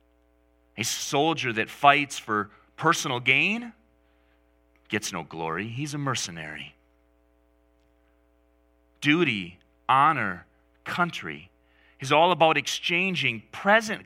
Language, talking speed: English, 90 wpm